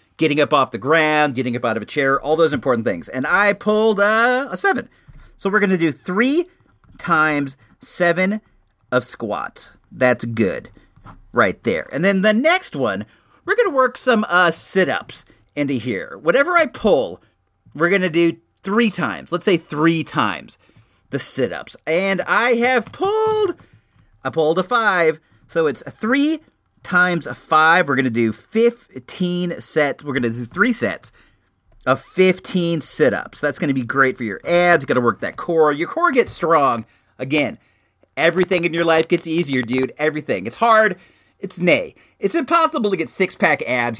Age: 40-59